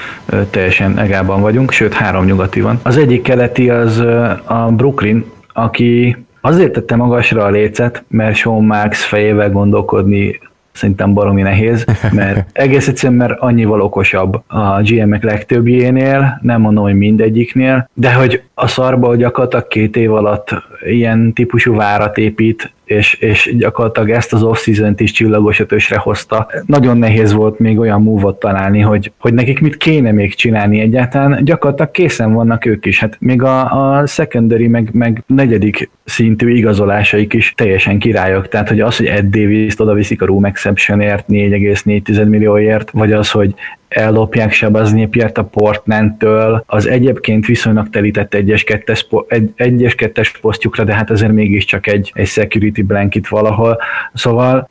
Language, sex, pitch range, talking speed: Hungarian, male, 105-120 Hz, 145 wpm